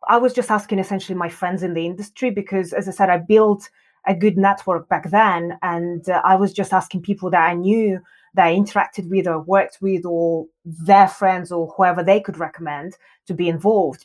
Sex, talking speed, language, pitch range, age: female, 210 wpm, English, 180-220 Hz, 30-49